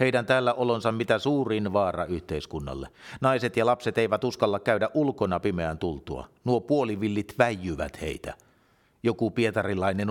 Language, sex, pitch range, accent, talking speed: Finnish, male, 90-115 Hz, native, 130 wpm